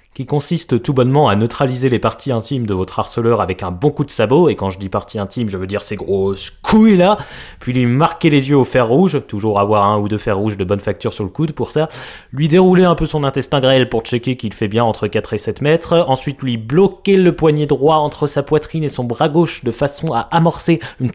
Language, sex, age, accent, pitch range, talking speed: French, male, 20-39, French, 105-150 Hz, 255 wpm